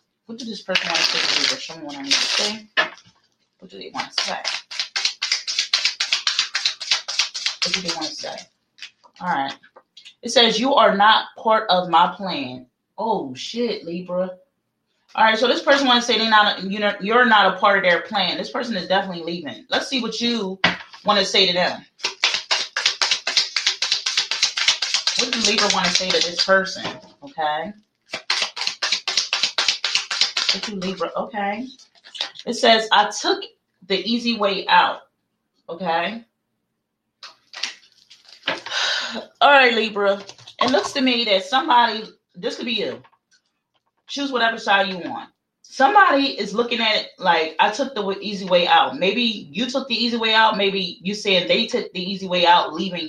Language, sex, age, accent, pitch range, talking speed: English, female, 30-49, American, 185-240 Hz, 155 wpm